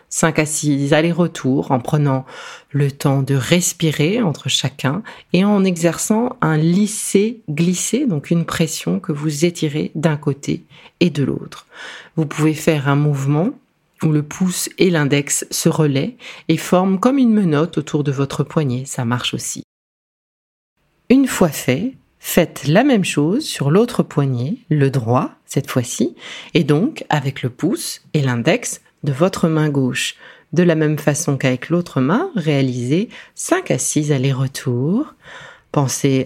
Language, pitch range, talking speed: French, 145-235 Hz, 150 wpm